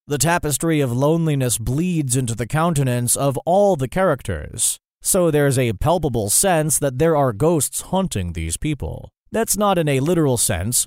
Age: 30-49